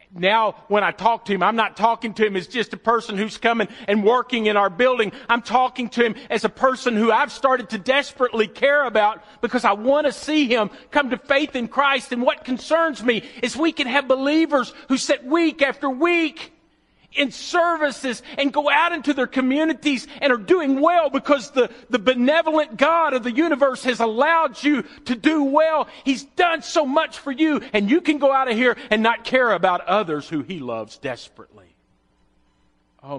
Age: 40-59